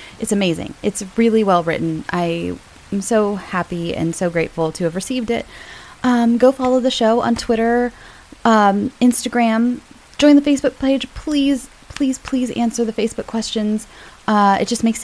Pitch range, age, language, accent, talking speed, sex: 195-255 Hz, 20-39, English, American, 160 wpm, female